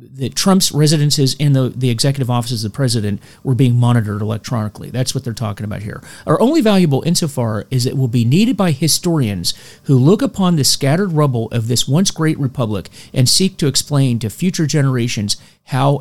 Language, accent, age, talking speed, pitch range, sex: English, American, 40-59, 190 wpm, 120-155 Hz, male